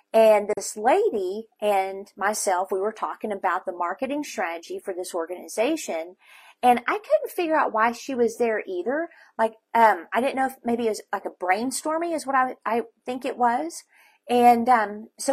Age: 40-59